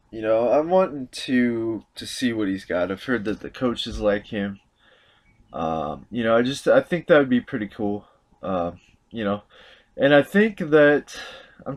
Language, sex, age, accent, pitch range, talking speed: English, male, 20-39, American, 100-140 Hz, 190 wpm